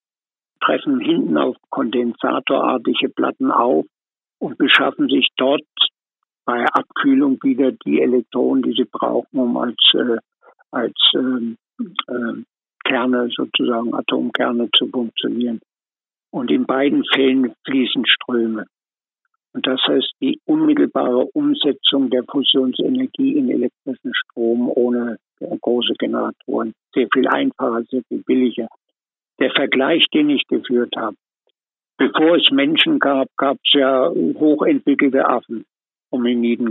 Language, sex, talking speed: German, male, 115 wpm